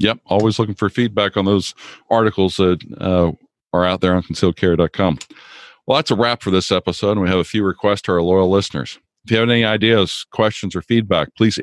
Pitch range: 90-105 Hz